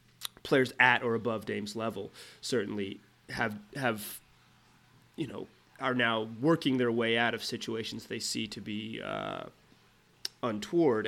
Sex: male